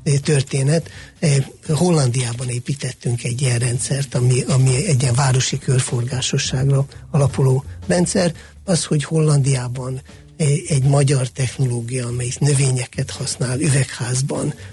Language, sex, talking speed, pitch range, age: Hungarian, male, 100 wpm, 125-145 Hz, 60-79